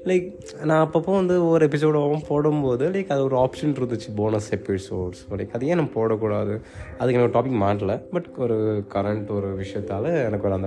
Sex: male